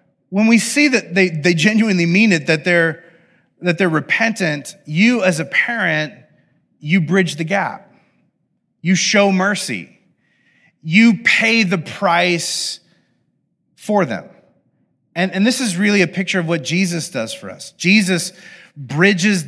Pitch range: 155-195 Hz